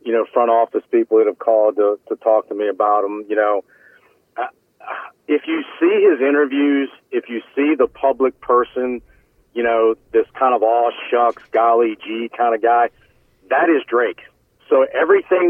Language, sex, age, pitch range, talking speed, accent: English, male, 40-59, 115-145 Hz, 180 wpm, American